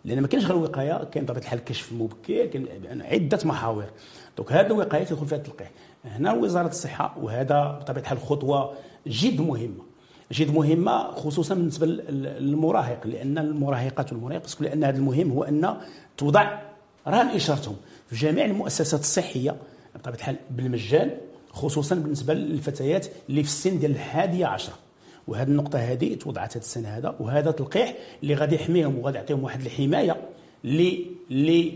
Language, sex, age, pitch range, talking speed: French, male, 50-69, 135-165 Hz, 140 wpm